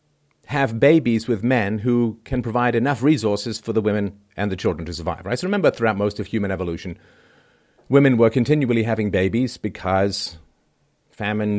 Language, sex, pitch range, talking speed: English, male, 95-115 Hz, 165 wpm